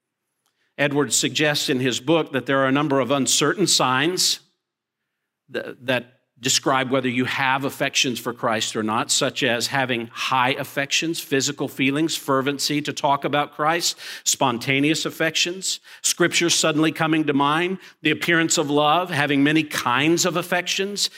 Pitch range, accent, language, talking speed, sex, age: 135-175 Hz, American, English, 145 wpm, male, 50-69